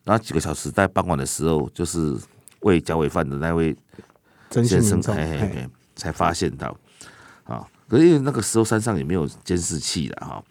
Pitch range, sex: 80-110 Hz, male